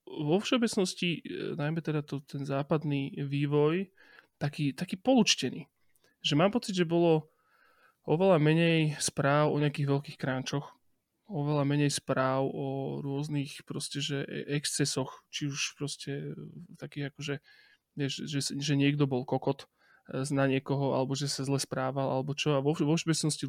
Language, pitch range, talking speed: Slovak, 135-155 Hz, 140 wpm